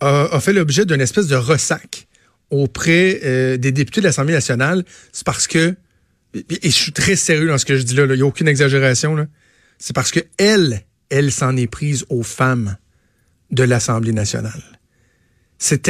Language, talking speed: French, 175 wpm